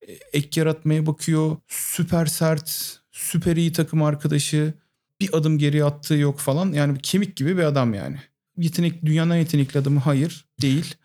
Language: Turkish